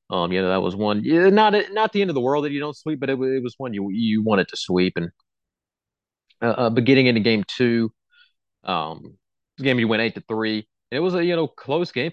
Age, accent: 30-49, American